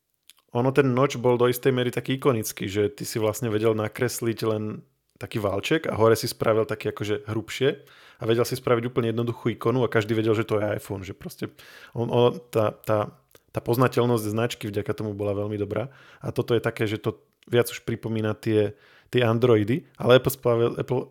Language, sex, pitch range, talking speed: Slovak, male, 110-130 Hz, 195 wpm